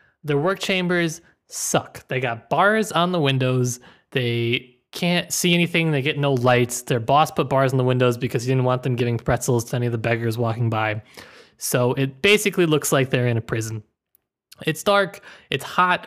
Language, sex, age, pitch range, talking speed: English, male, 20-39, 120-160 Hz, 195 wpm